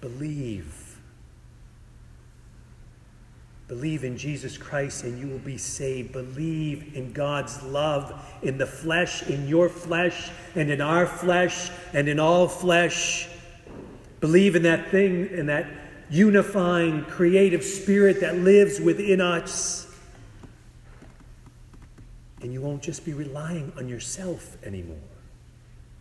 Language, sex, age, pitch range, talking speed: English, male, 40-59, 130-170 Hz, 115 wpm